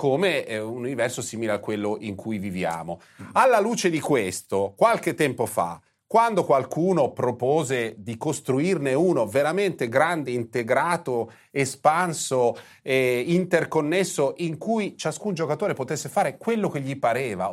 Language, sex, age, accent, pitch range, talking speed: Italian, male, 30-49, native, 130-205 Hz, 130 wpm